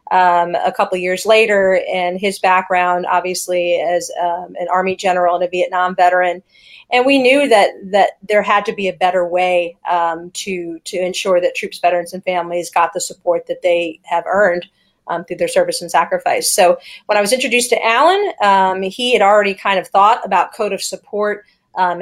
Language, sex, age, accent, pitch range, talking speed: English, female, 30-49, American, 180-200 Hz, 195 wpm